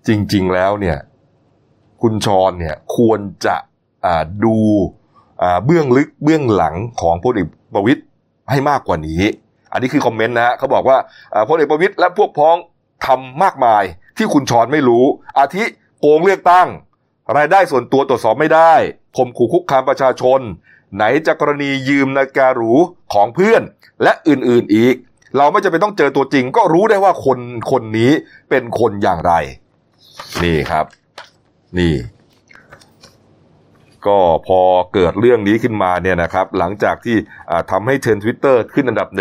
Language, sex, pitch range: Thai, male, 105-140 Hz